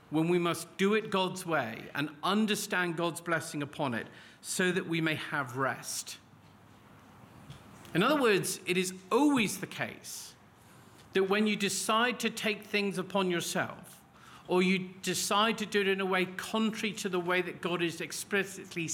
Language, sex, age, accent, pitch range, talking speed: English, male, 50-69, British, 155-195 Hz, 170 wpm